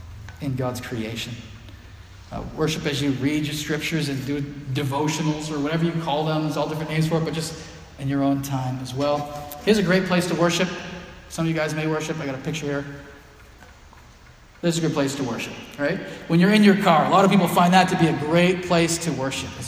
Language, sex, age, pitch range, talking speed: English, male, 40-59, 135-170 Hz, 230 wpm